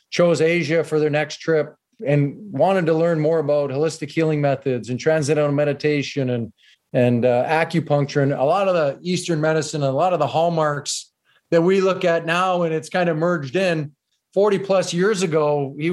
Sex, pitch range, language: male, 145-165 Hz, English